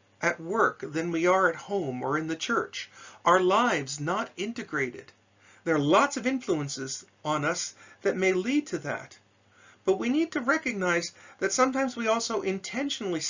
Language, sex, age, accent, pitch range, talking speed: English, male, 40-59, American, 145-220 Hz, 165 wpm